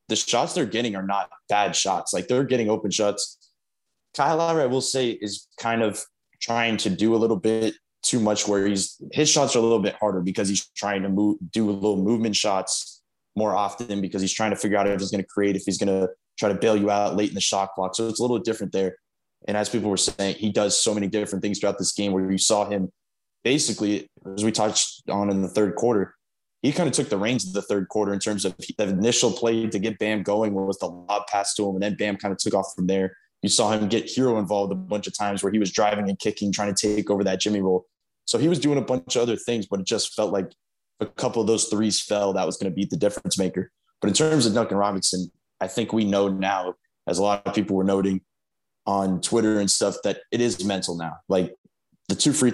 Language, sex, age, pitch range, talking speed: English, male, 20-39, 95-110 Hz, 255 wpm